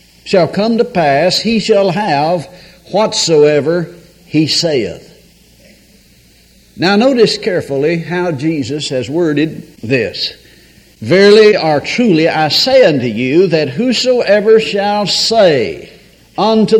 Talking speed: 105 wpm